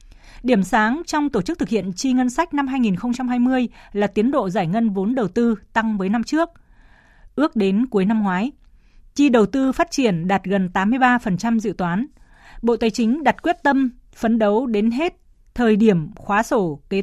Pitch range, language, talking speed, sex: 200-255 Hz, Vietnamese, 190 wpm, female